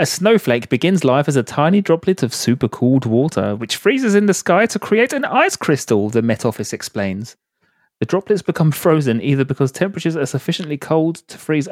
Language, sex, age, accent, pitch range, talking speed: English, male, 30-49, British, 120-165 Hz, 190 wpm